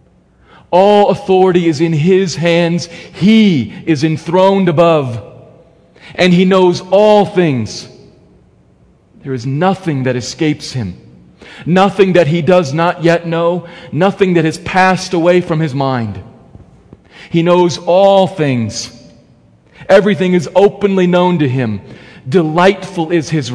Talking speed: 125 wpm